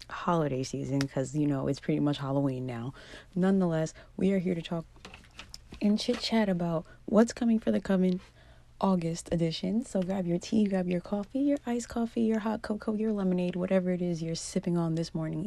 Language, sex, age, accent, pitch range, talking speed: English, female, 30-49, American, 150-190 Hz, 195 wpm